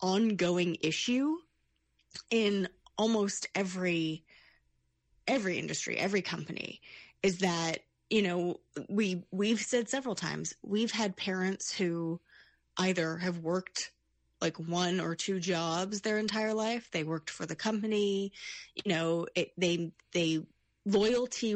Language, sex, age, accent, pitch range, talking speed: English, female, 20-39, American, 165-215 Hz, 120 wpm